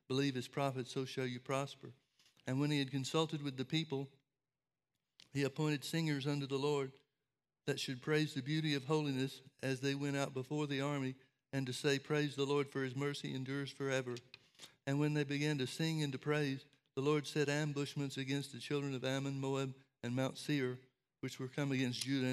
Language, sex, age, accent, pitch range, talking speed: English, male, 60-79, American, 130-140 Hz, 195 wpm